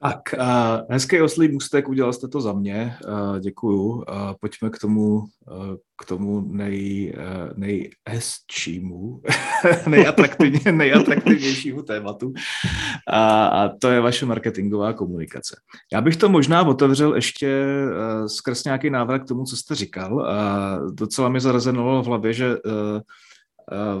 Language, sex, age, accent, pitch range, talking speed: Czech, male, 30-49, native, 105-125 Hz, 120 wpm